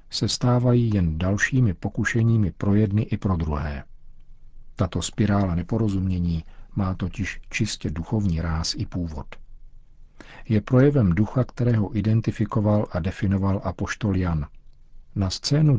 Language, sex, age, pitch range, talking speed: Czech, male, 50-69, 90-110 Hz, 120 wpm